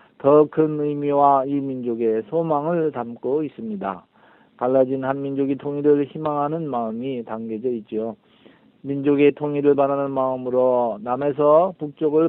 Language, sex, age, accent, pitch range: Korean, male, 40-59, native, 125-150 Hz